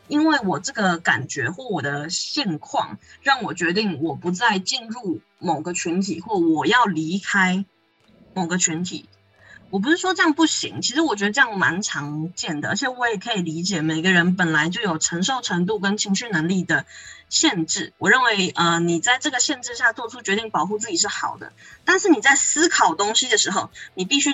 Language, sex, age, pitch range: Chinese, female, 20-39, 180-260 Hz